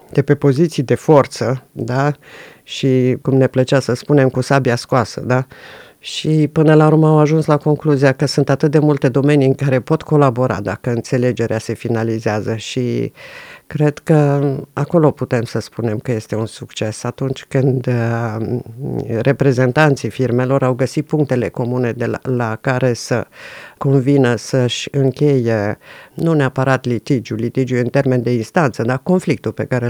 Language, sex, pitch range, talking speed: Romanian, female, 125-150 Hz, 155 wpm